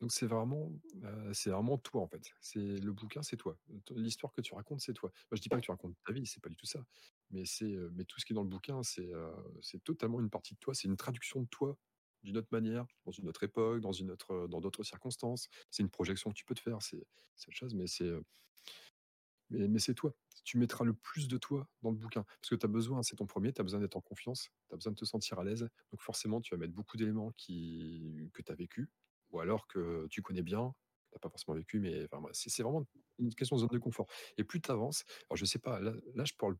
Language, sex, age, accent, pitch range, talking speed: French, male, 30-49, French, 95-125 Hz, 275 wpm